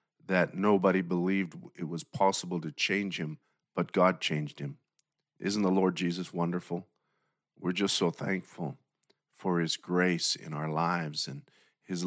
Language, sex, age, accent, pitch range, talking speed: English, male, 50-69, American, 85-100 Hz, 150 wpm